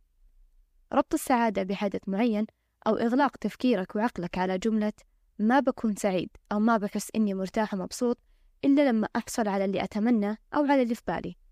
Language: Arabic